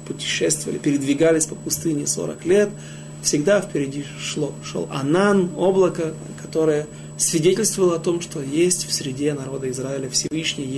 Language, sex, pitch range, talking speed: Russian, male, 110-180 Hz, 125 wpm